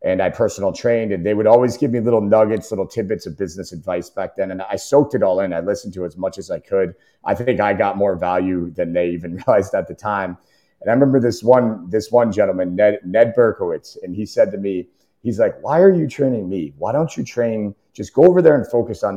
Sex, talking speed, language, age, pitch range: male, 250 wpm, English, 30-49, 95-125 Hz